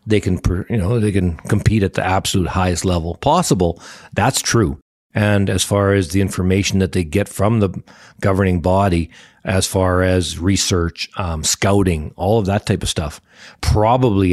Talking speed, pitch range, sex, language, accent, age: 170 wpm, 90-105 Hz, male, English, American, 40-59